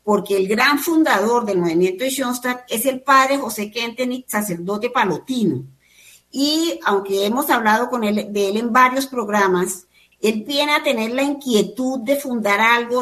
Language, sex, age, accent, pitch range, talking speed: Spanish, female, 50-69, American, 195-260 Hz, 160 wpm